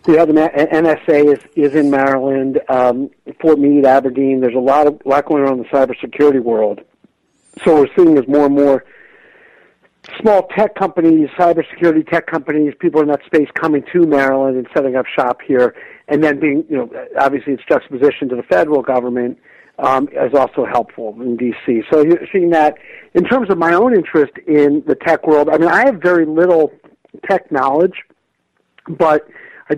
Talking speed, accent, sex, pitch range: 180 wpm, American, male, 135-170 Hz